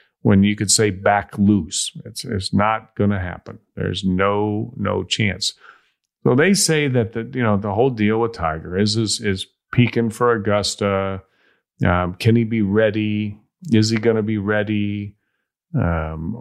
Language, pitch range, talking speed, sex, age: English, 95-115 Hz, 170 wpm, male, 40-59